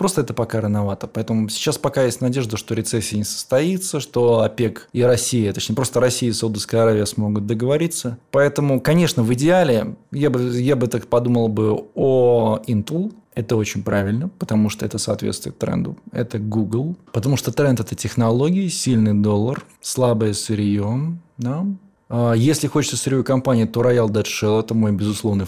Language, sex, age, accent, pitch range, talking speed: Russian, male, 20-39, native, 105-130 Hz, 165 wpm